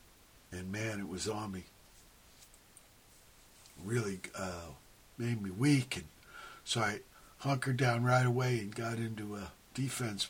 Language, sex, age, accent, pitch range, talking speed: English, male, 60-79, American, 100-125 Hz, 135 wpm